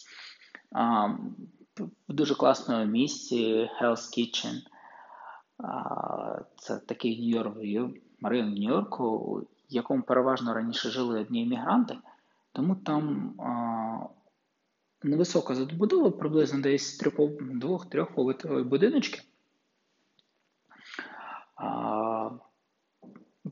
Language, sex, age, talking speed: Ukrainian, male, 20-39, 80 wpm